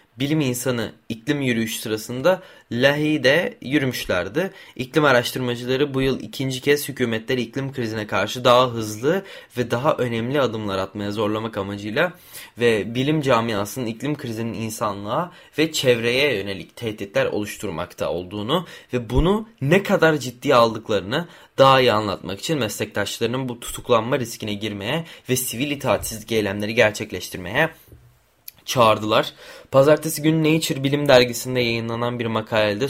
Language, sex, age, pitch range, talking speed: Turkish, male, 20-39, 110-140 Hz, 120 wpm